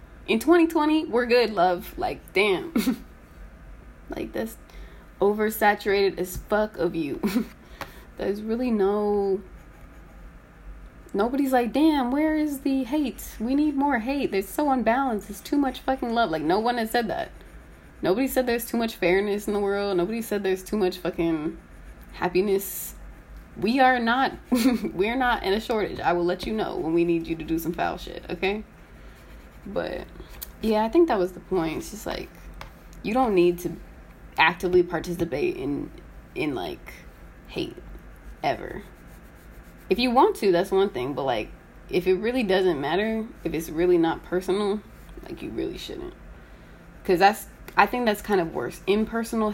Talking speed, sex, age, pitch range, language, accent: 165 wpm, female, 20-39, 180-245 Hz, English, American